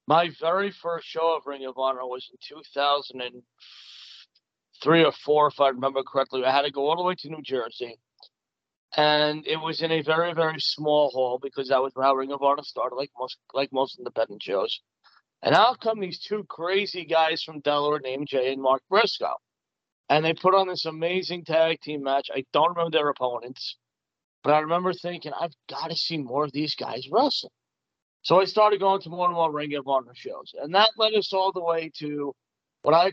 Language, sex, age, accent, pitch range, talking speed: English, male, 40-59, American, 140-175 Hz, 210 wpm